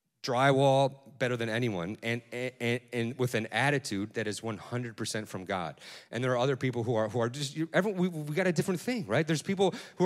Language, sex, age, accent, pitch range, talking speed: English, male, 30-49, American, 115-155 Hz, 220 wpm